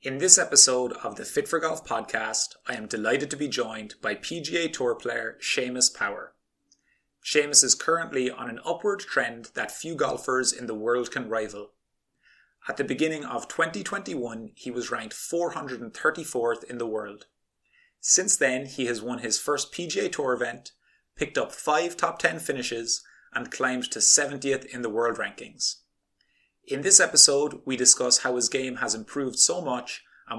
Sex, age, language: male, 30-49, English